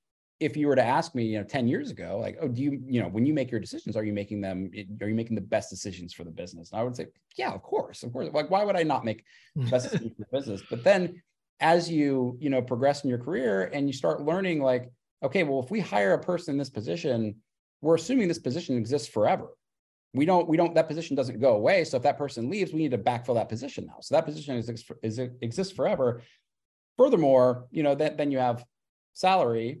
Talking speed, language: 250 wpm, English